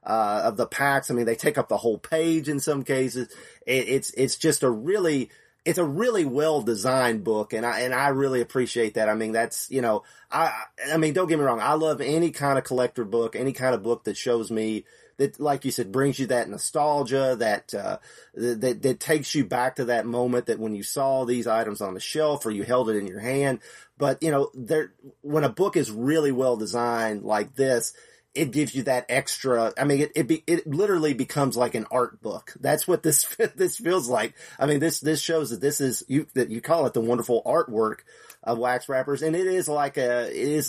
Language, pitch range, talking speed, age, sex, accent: English, 115-140 Hz, 230 wpm, 30-49, male, American